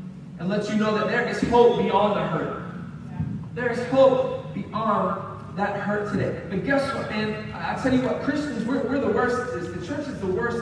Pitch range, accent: 210-270 Hz, American